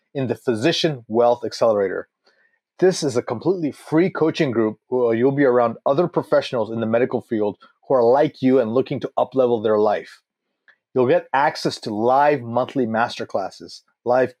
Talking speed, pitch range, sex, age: 165 wpm, 120-150 Hz, male, 30-49